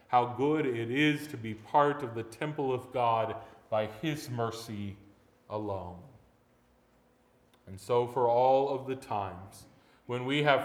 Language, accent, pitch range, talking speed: English, American, 120-150 Hz, 145 wpm